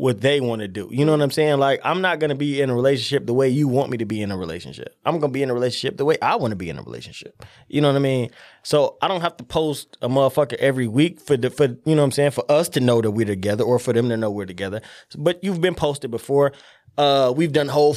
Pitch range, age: 115-150 Hz, 20-39